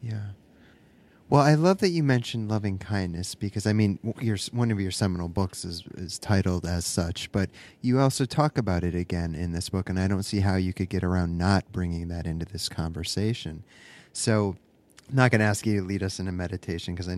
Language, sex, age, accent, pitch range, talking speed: English, male, 30-49, American, 95-120 Hz, 220 wpm